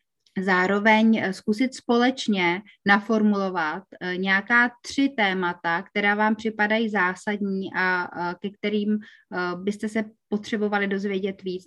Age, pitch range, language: 30-49, 185-215 Hz, Czech